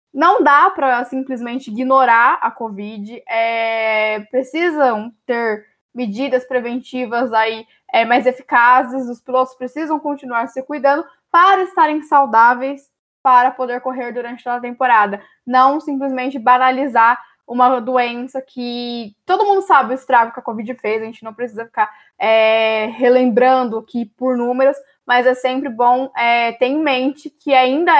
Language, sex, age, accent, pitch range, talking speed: Portuguese, female, 10-29, Brazilian, 240-280 Hz, 135 wpm